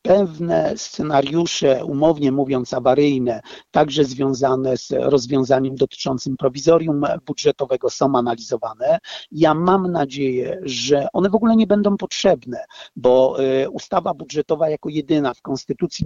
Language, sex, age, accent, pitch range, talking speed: Polish, male, 50-69, native, 135-170 Hz, 115 wpm